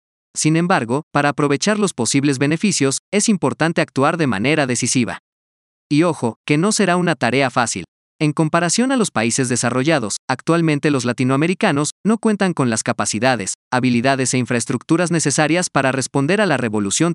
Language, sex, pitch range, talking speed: Spanish, male, 125-165 Hz, 155 wpm